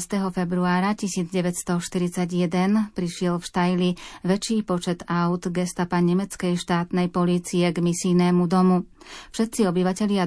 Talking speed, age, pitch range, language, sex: 105 wpm, 30-49, 175-195 Hz, Slovak, female